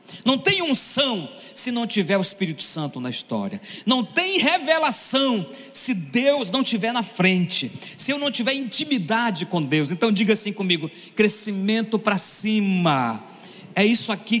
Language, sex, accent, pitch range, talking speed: Portuguese, male, Brazilian, 185-265 Hz, 155 wpm